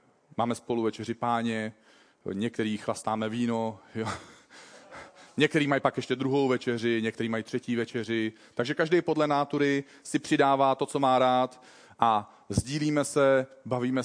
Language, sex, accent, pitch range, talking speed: Czech, male, native, 115-145 Hz, 135 wpm